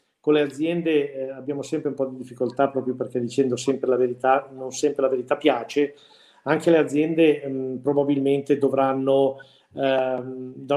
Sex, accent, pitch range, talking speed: male, native, 130-145 Hz, 160 wpm